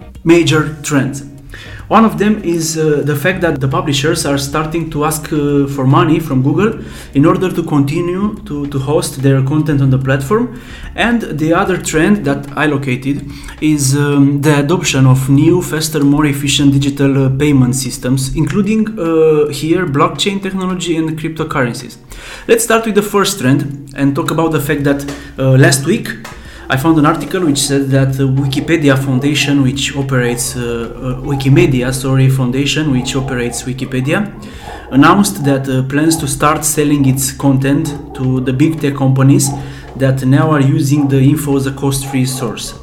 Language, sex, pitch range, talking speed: Romanian, male, 135-160 Hz, 165 wpm